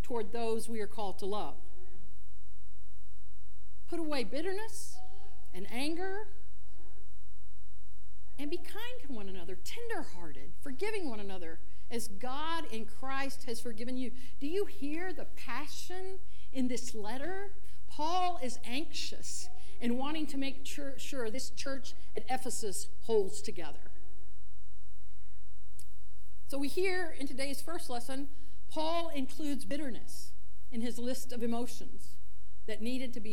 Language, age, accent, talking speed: English, 50-69, American, 125 wpm